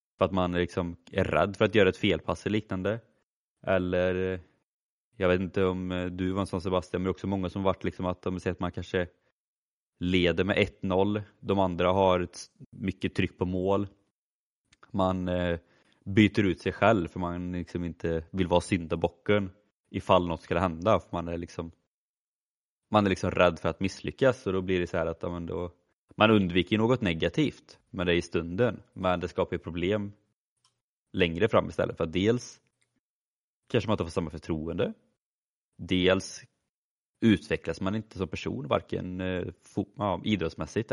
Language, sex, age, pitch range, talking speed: Swedish, male, 20-39, 85-100 Hz, 175 wpm